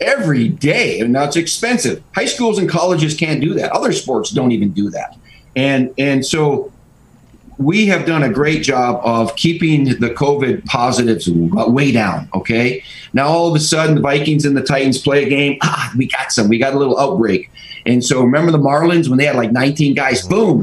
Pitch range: 120-150 Hz